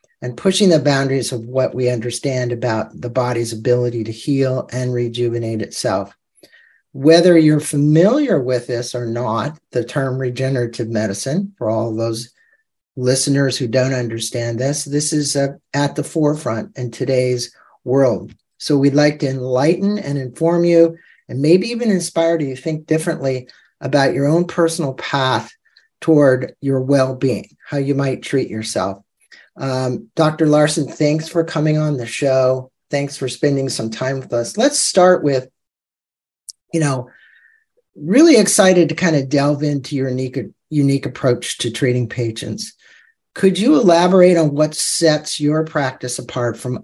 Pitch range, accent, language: 125-155 Hz, American, English